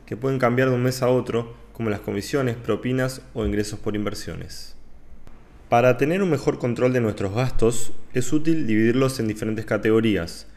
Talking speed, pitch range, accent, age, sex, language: 170 wpm, 105-130 Hz, Argentinian, 20-39, male, Spanish